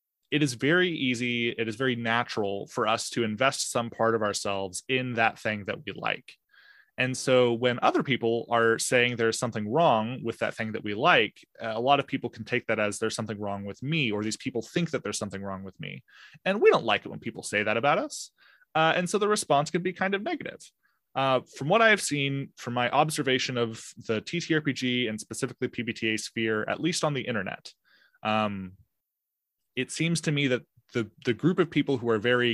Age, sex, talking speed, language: 20-39, male, 215 wpm, English